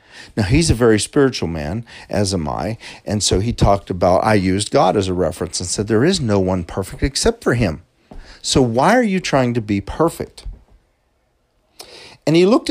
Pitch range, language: 100-130 Hz, English